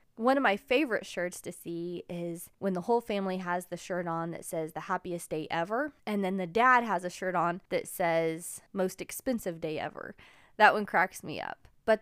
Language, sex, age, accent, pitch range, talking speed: English, female, 20-39, American, 185-255 Hz, 210 wpm